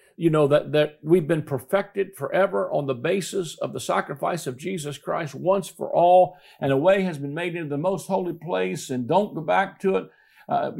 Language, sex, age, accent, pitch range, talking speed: English, male, 50-69, American, 135-185 Hz, 210 wpm